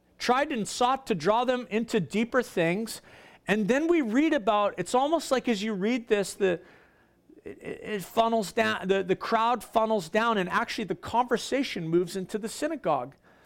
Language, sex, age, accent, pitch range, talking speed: English, male, 40-59, American, 190-250 Hz, 175 wpm